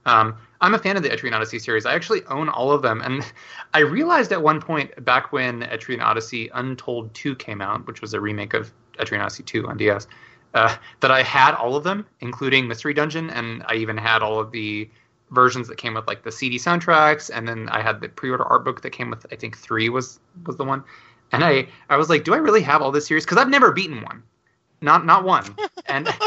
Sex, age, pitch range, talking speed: male, 20-39, 110-145 Hz, 235 wpm